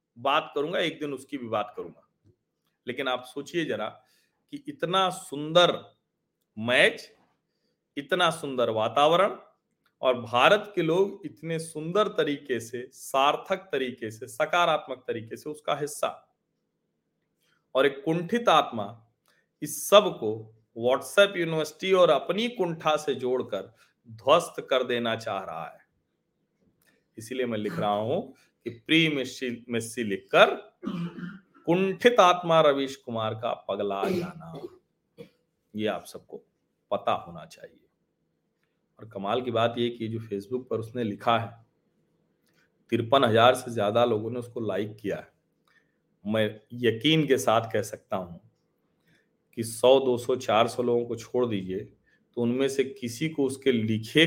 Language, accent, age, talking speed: Hindi, native, 40-59, 135 wpm